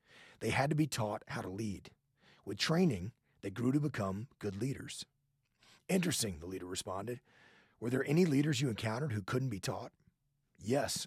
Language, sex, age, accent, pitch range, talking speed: English, male, 40-59, American, 100-140 Hz, 170 wpm